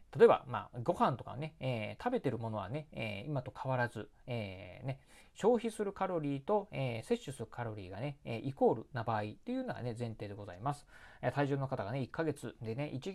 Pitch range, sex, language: 115-155 Hz, male, Japanese